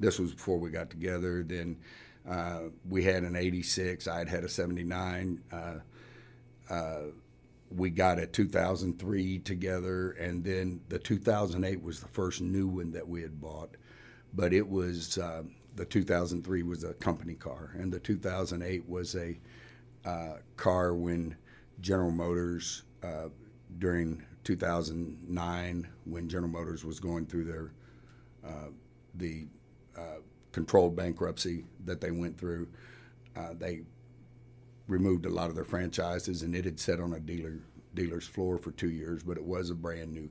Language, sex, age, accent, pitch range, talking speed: English, male, 50-69, American, 85-110 Hz, 150 wpm